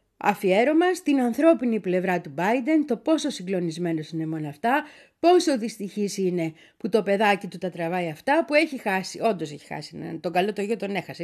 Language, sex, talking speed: Greek, female, 180 wpm